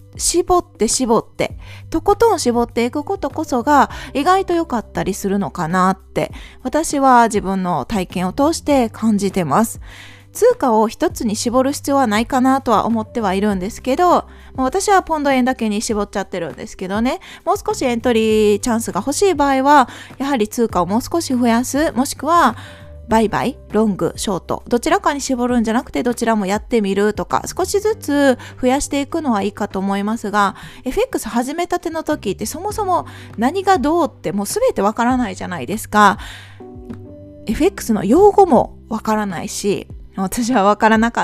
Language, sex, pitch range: Japanese, female, 205-295 Hz